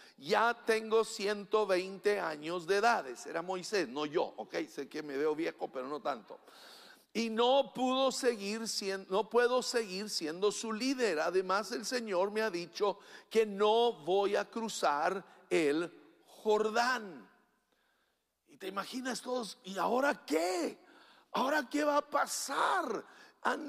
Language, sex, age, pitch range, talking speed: English, male, 50-69, 190-230 Hz, 140 wpm